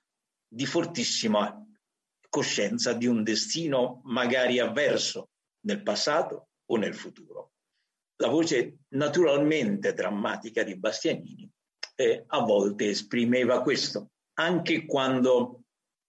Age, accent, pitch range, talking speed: 60-79, native, 110-175 Hz, 95 wpm